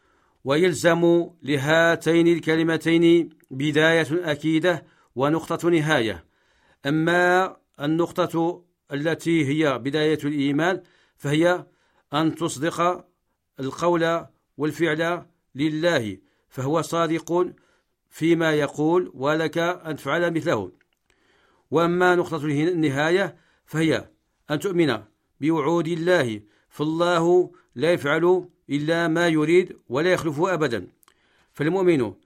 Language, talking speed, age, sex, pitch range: Arabic, 85 wpm, 50-69, male, 150-170 Hz